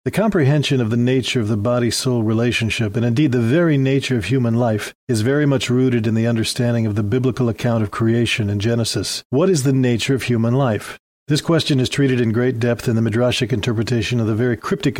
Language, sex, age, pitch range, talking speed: English, male, 40-59, 115-135 Hz, 215 wpm